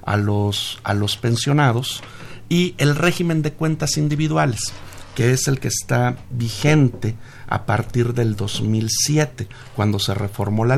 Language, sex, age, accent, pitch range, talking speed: Spanish, male, 50-69, Mexican, 105-130 Hz, 135 wpm